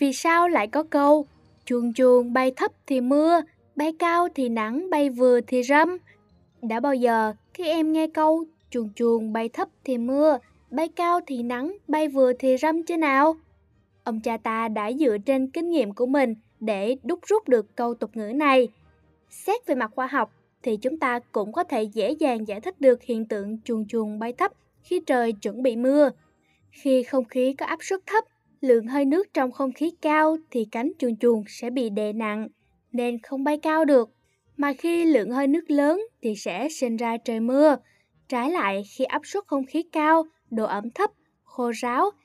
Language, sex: Vietnamese, female